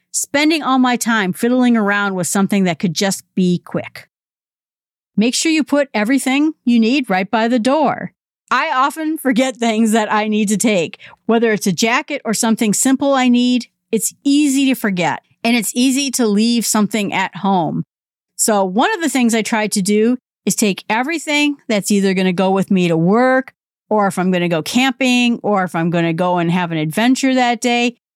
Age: 40-59